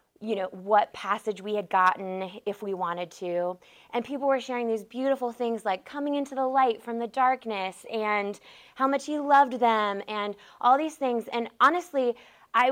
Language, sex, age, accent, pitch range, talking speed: English, female, 20-39, American, 205-250 Hz, 185 wpm